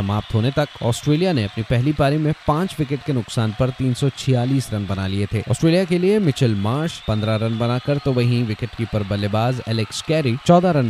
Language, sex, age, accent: Hindi, male, 30-49, native